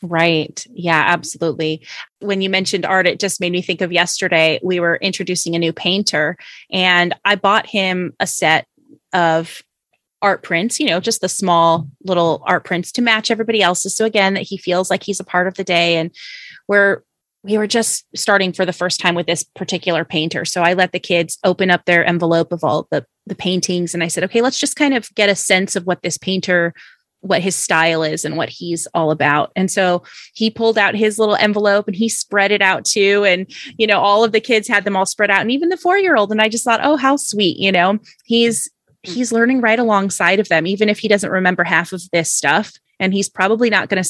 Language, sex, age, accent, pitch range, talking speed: English, female, 20-39, American, 170-205 Hz, 225 wpm